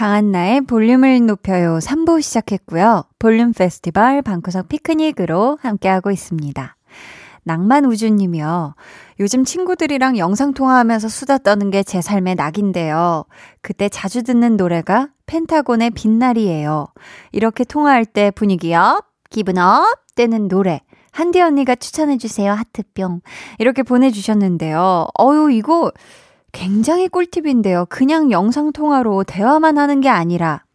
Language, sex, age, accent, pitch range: Korean, female, 20-39, native, 190-270 Hz